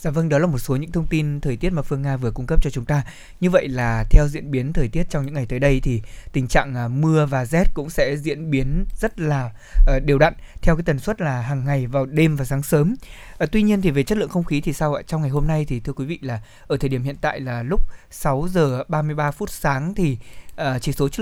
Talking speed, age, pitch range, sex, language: 270 wpm, 20-39, 135-165 Hz, male, Vietnamese